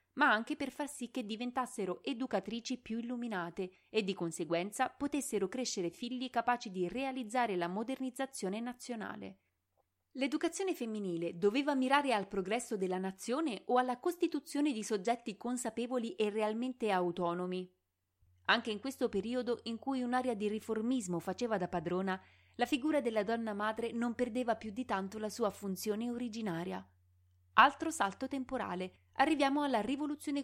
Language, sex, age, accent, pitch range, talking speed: Italian, female, 30-49, native, 185-255 Hz, 140 wpm